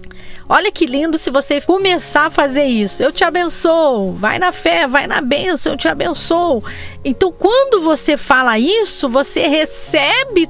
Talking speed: 160 wpm